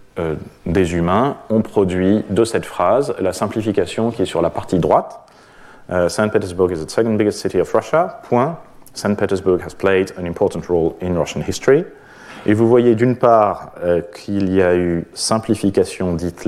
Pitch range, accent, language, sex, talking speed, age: 90-105 Hz, French, French, male, 170 wpm, 30-49